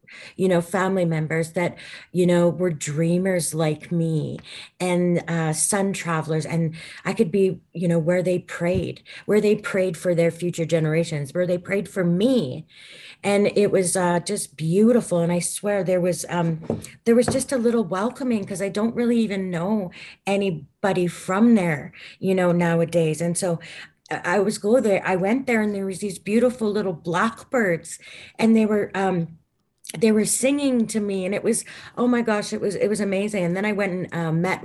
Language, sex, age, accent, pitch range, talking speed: English, female, 30-49, American, 165-195 Hz, 190 wpm